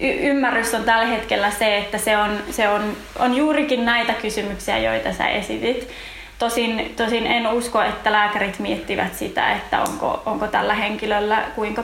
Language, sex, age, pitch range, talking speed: Finnish, female, 20-39, 215-240 Hz, 160 wpm